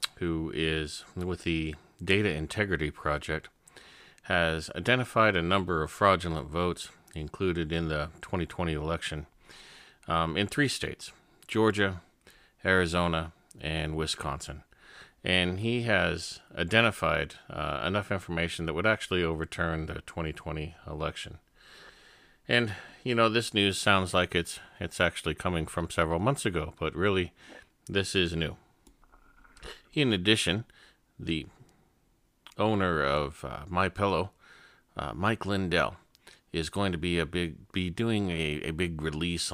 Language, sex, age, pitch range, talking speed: English, male, 40-59, 80-100 Hz, 125 wpm